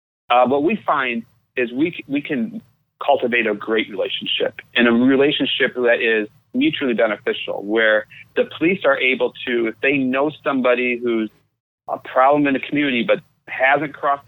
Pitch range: 115-150 Hz